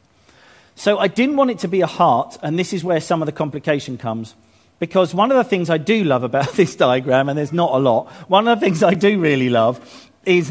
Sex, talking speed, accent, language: male, 245 wpm, British, English